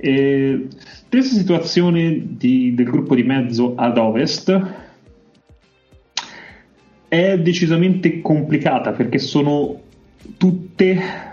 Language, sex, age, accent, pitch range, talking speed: Italian, male, 30-49, native, 110-135 Hz, 85 wpm